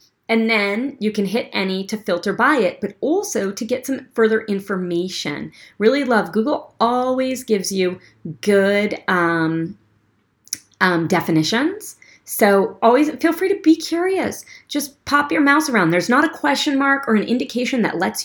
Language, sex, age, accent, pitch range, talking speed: English, female, 40-59, American, 170-245 Hz, 160 wpm